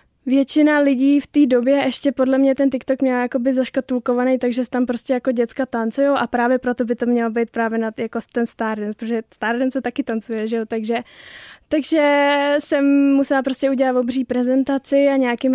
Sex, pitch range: female, 235-265 Hz